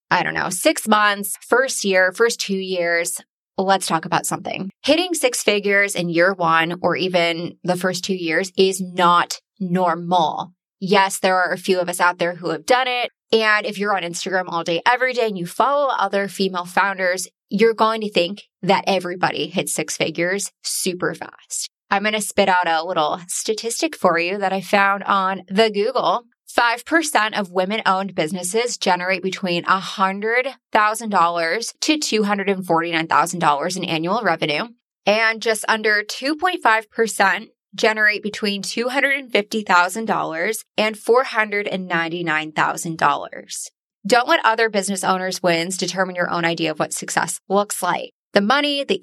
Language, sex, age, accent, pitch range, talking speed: English, female, 20-39, American, 180-230 Hz, 150 wpm